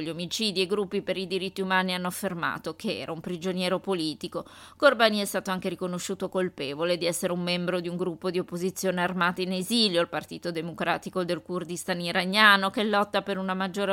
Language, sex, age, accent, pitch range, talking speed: Italian, female, 20-39, native, 180-205 Hz, 190 wpm